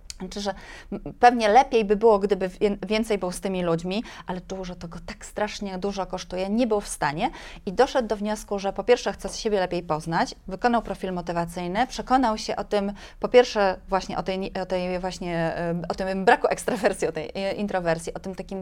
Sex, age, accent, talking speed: female, 20-39, native, 200 wpm